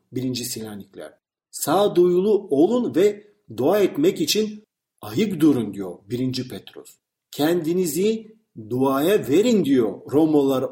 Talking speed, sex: 105 wpm, male